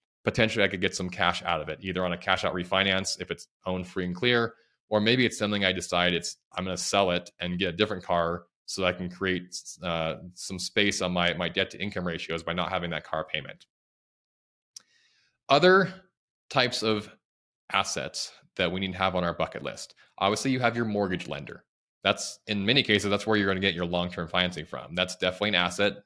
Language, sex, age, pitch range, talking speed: English, male, 20-39, 90-105 Hz, 220 wpm